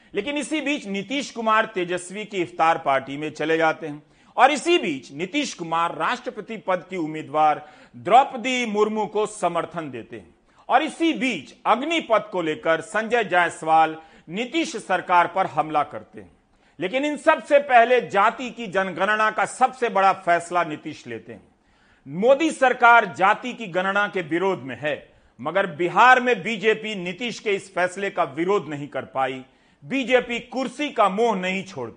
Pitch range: 175-245 Hz